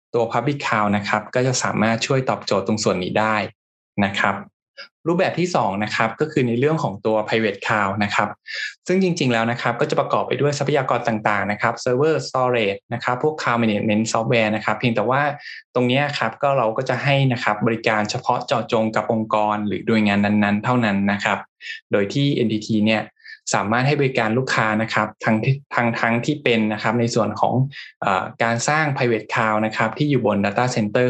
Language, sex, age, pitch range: Thai, male, 20-39, 105-130 Hz